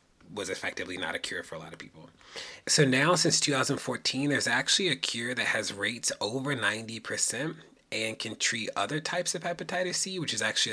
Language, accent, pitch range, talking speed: English, American, 110-150 Hz, 190 wpm